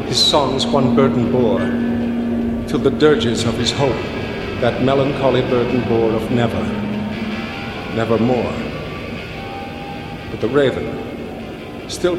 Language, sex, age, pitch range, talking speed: English, male, 50-69, 105-125 Hz, 115 wpm